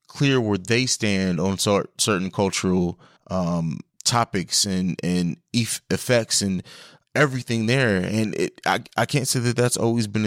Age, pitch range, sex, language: 20-39, 100-125 Hz, male, English